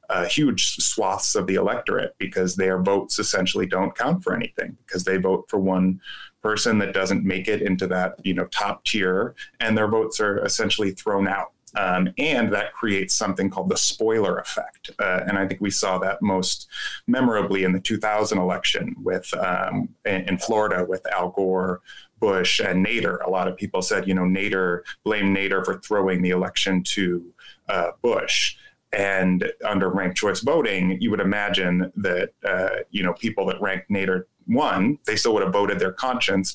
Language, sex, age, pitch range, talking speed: English, male, 20-39, 90-105 Hz, 180 wpm